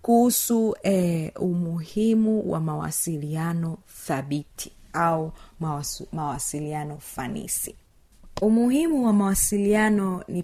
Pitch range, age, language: 160-210 Hz, 30-49, Swahili